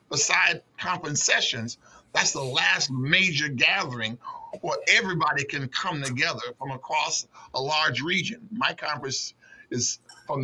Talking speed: 125 wpm